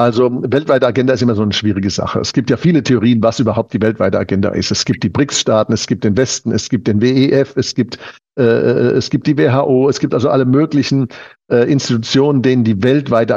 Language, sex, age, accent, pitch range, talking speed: German, male, 60-79, German, 110-140 Hz, 220 wpm